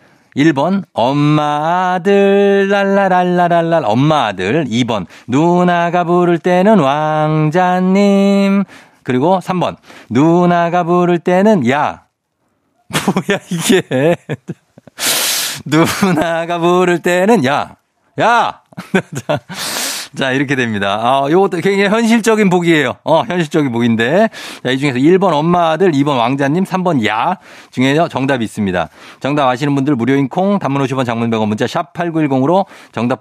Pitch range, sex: 125-180 Hz, male